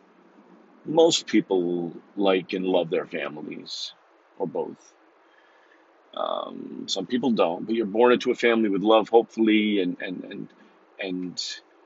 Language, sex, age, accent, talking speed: English, male, 40-59, American, 130 wpm